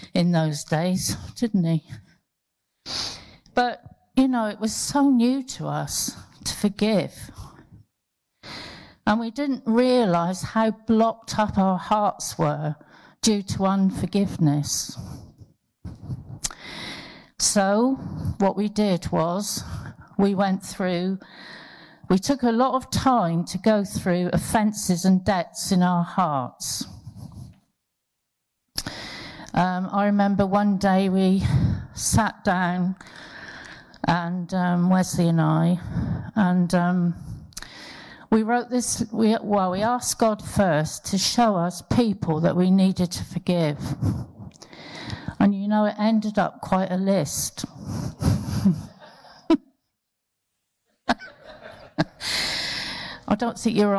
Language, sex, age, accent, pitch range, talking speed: English, female, 50-69, British, 175-220 Hz, 110 wpm